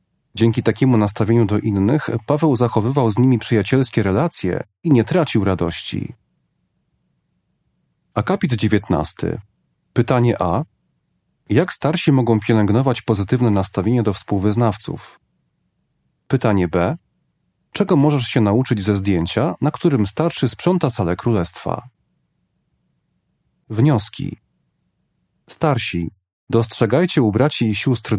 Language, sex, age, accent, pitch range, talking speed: Polish, male, 30-49, native, 105-135 Hz, 100 wpm